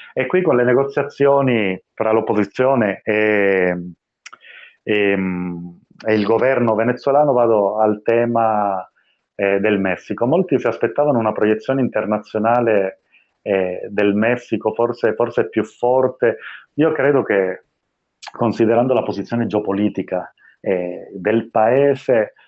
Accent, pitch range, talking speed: native, 100-125 Hz, 110 wpm